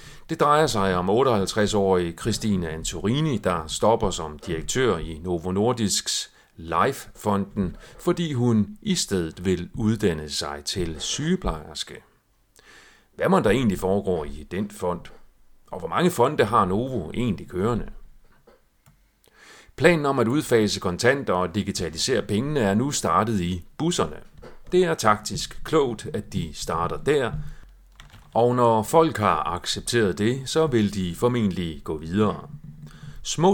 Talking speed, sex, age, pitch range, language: 130 wpm, male, 40-59, 90-125 Hz, Danish